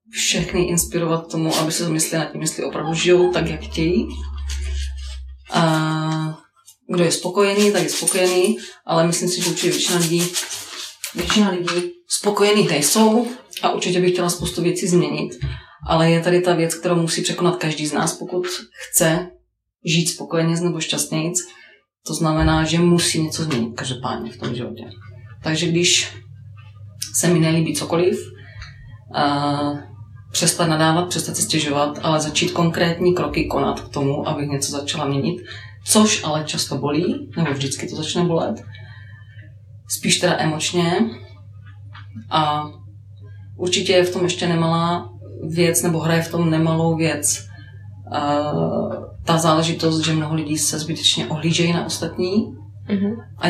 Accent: native